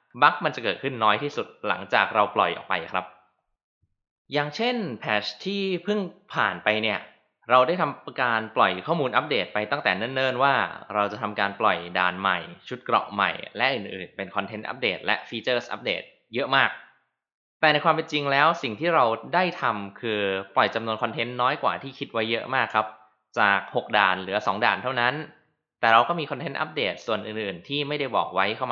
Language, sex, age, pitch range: Thai, male, 20-39, 100-145 Hz